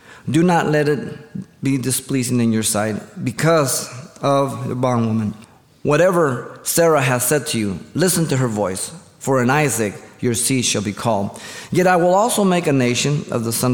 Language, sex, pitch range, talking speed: English, male, 115-150 Hz, 180 wpm